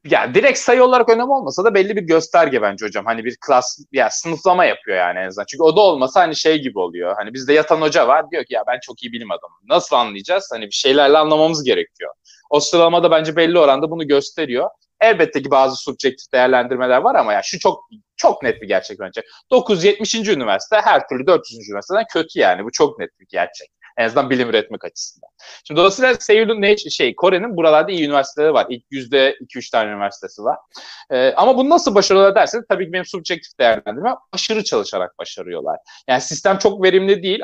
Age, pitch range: 30-49, 145-215 Hz